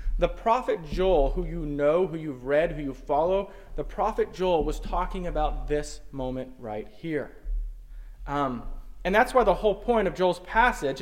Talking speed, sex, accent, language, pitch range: 175 wpm, male, American, English, 140-195 Hz